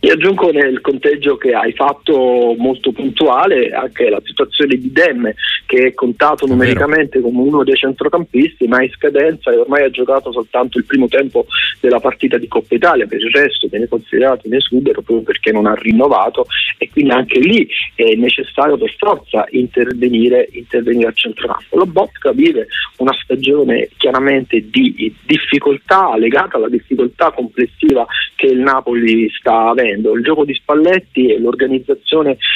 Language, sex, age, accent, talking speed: Italian, male, 30-49, native, 155 wpm